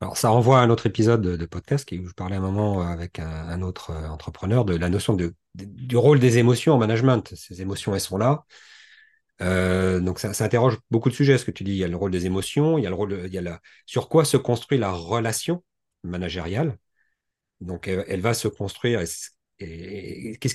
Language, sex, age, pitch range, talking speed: French, male, 40-59, 90-125 Hz, 220 wpm